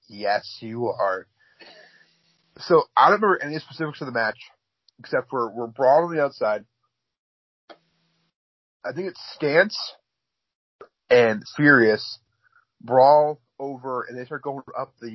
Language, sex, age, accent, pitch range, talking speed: English, male, 30-49, American, 115-165 Hz, 130 wpm